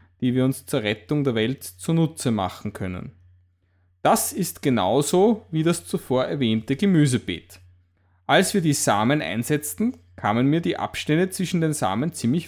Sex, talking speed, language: male, 150 wpm, English